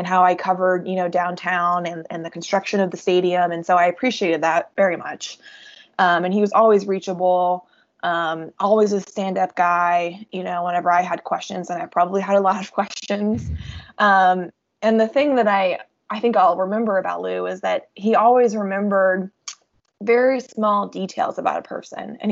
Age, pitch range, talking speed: 20-39, 180-215 Hz, 190 wpm